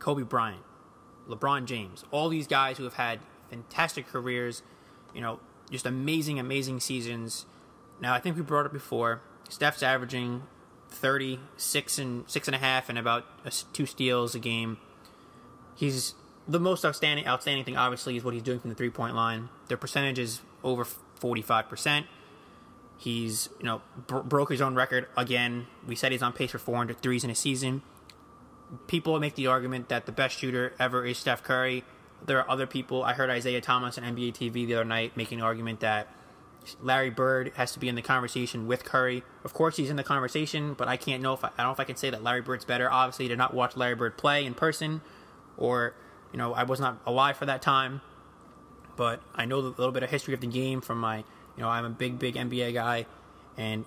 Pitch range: 120-135 Hz